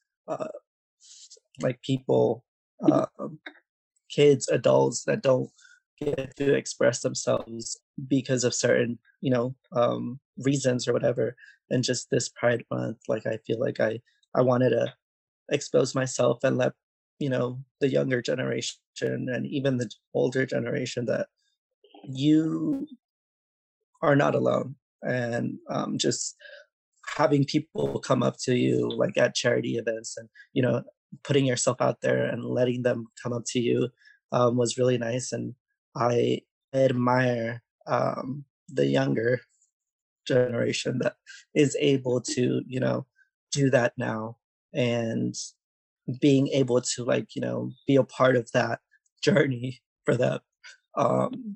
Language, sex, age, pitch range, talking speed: English, male, 20-39, 115-140 Hz, 135 wpm